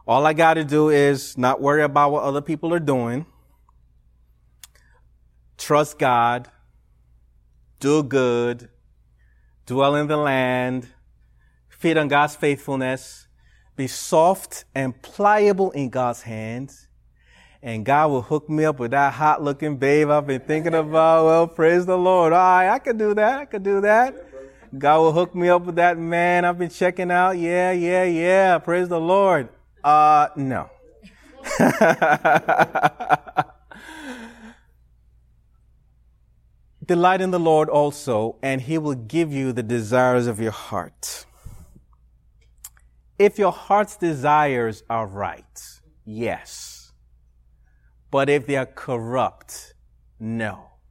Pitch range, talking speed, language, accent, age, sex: 100-160 Hz, 125 wpm, English, American, 30-49, male